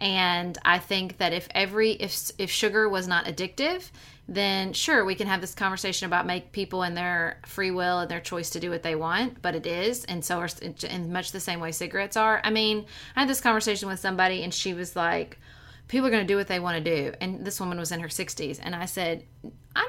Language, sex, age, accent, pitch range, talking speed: English, female, 30-49, American, 175-220 Hz, 240 wpm